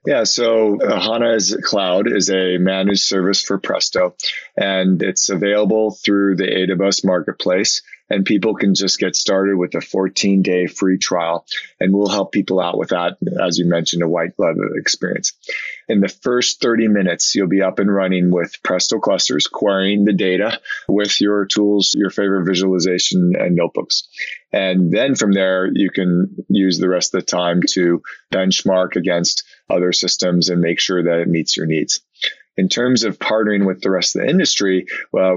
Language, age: English, 20-39